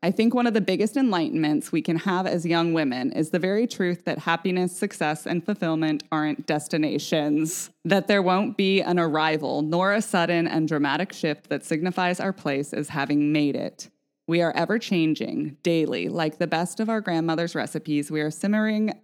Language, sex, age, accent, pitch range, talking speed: English, female, 20-39, American, 150-185 Hz, 185 wpm